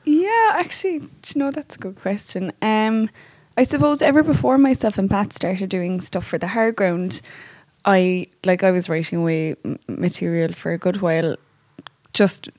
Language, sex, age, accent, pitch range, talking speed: English, female, 20-39, Irish, 170-210 Hz, 170 wpm